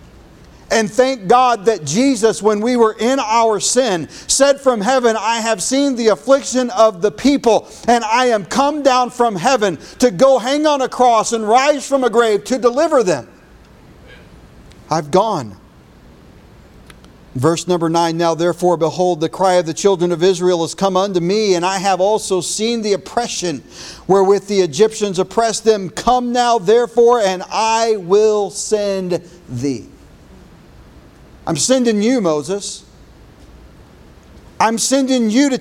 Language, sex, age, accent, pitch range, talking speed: English, male, 40-59, American, 180-250 Hz, 150 wpm